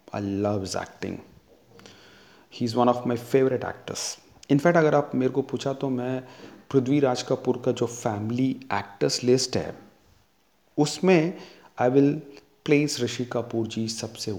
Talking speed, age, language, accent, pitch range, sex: 150 wpm, 30-49, Hindi, native, 105-140 Hz, male